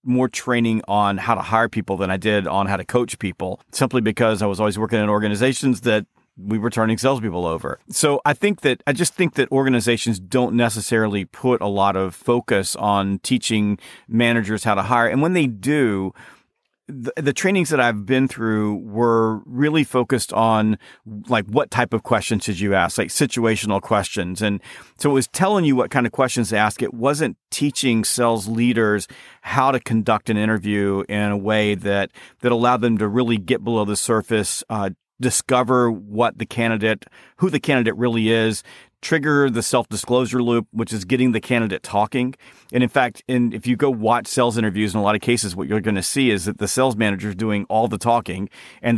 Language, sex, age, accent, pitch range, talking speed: English, male, 40-59, American, 105-125 Hz, 200 wpm